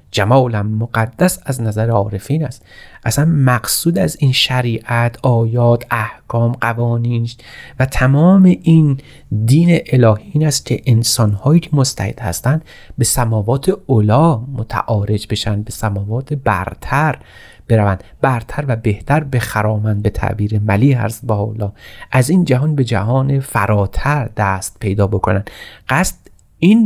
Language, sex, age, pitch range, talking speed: Persian, male, 30-49, 110-135 Hz, 120 wpm